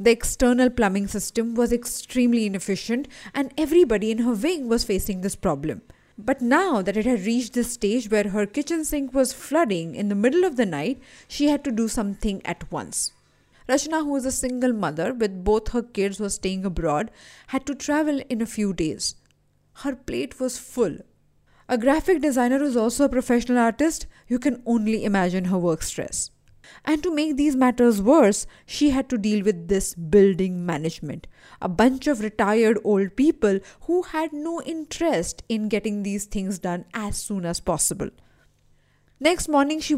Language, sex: English, female